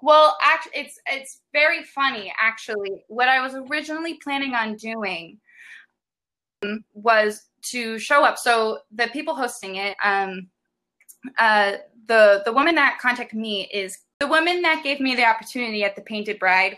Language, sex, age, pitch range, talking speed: English, female, 20-39, 205-250 Hz, 155 wpm